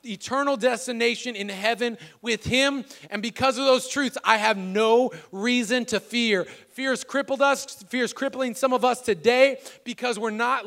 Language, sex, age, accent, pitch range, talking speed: English, male, 20-39, American, 200-240 Hz, 175 wpm